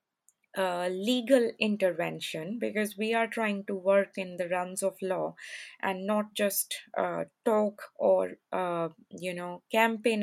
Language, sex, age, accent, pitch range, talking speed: English, female, 20-39, Indian, 185-215 Hz, 140 wpm